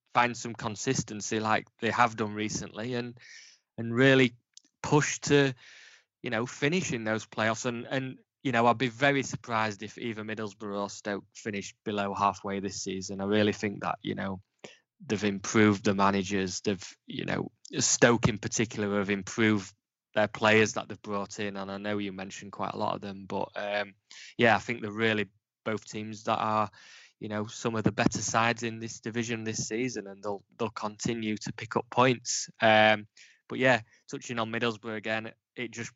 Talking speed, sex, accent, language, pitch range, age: 185 wpm, male, British, English, 105-115 Hz, 20-39